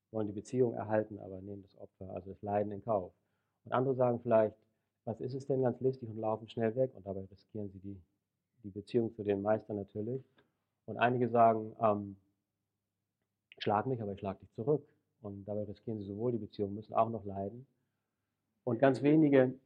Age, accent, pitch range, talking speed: 40-59, German, 105-125 Hz, 190 wpm